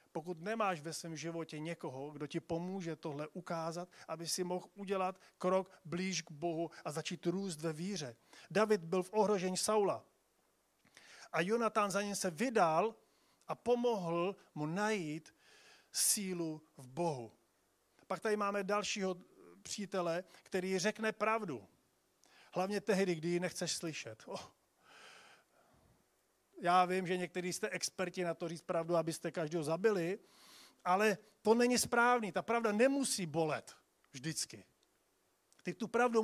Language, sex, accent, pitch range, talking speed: Czech, male, native, 170-220 Hz, 135 wpm